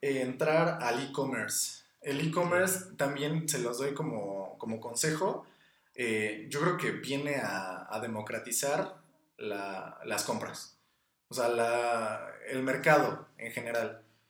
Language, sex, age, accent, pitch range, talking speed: Spanish, male, 20-39, Mexican, 115-155 Hz, 130 wpm